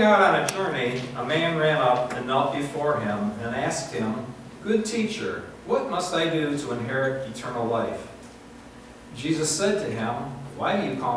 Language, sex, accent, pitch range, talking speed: English, male, American, 120-170 Hz, 175 wpm